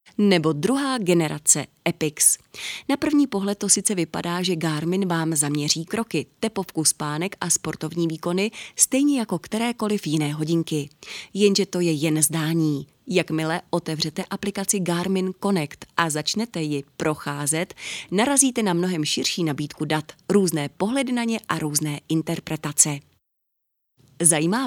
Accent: native